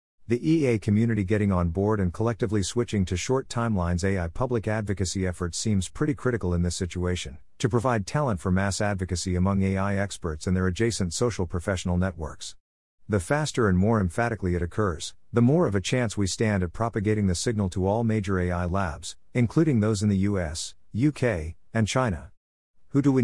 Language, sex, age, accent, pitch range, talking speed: English, male, 50-69, American, 90-115 Hz, 185 wpm